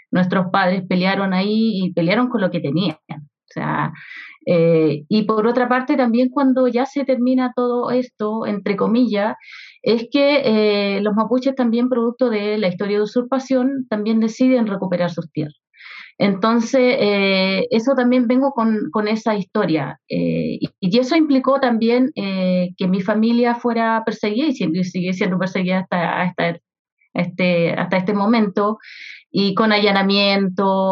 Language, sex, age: Spanish, female, 30-49